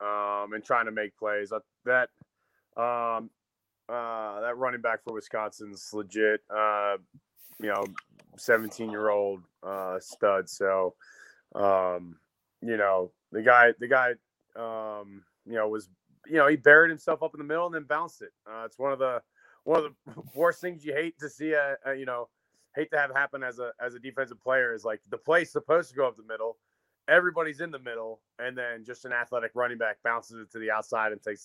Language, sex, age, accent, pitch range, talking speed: English, male, 20-39, American, 105-140 Hz, 200 wpm